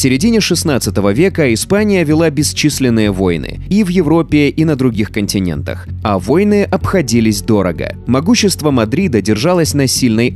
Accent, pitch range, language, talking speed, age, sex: native, 110-170 Hz, Russian, 140 wpm, 30-49, male